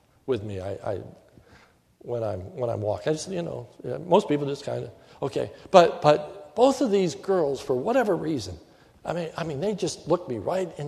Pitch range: 125-190 Hz